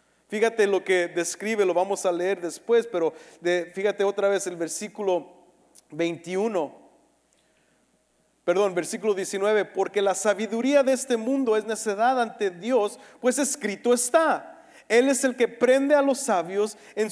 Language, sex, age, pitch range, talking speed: English, male, 40-59, 175-245 Hz, 145 wpm